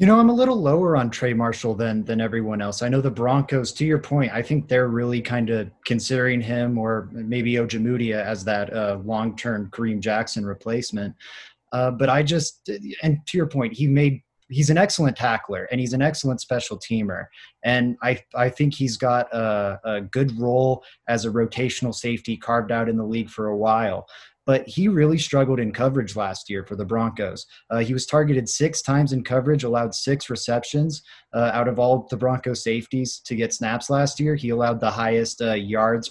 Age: 20-39